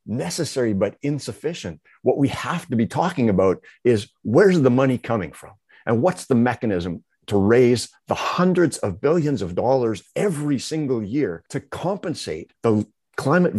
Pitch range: 100-130 Hz